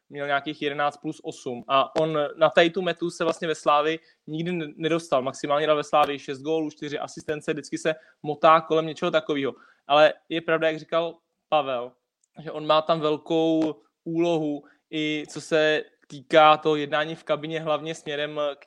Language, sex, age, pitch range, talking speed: Czech, male, 20-39, 145-160 Hz, 170 wpm